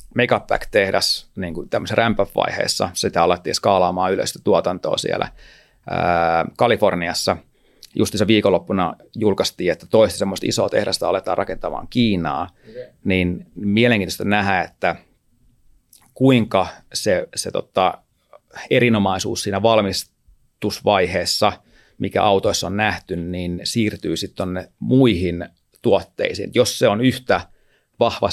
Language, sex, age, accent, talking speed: Finnish, male, 30-49, native, 100 wpm